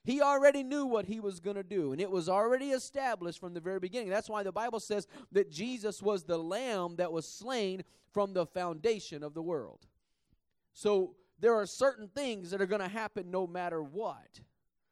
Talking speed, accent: 200 wpm, American